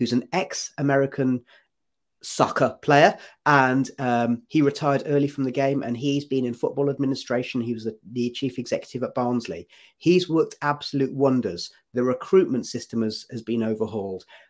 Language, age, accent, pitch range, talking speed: English, 30-49, British, 120-140 Hz, 160 wpm